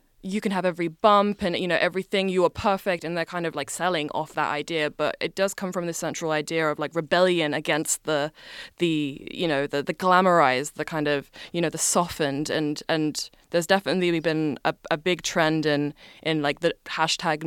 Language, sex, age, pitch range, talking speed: Danish, female, 20-39, 150-175 Hz, 210 wpm